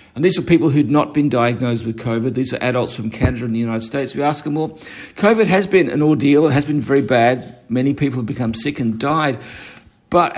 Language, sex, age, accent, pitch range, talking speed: English, male, 50-69, Australian, 125-155 Hz, 235 wpm